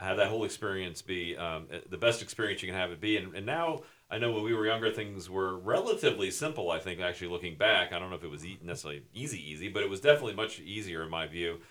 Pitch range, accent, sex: 90-110 Hz, American, male